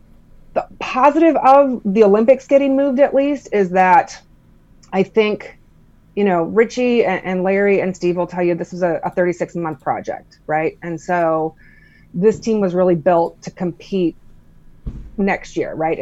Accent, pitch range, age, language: American, 160-190 Hz, 30-49, English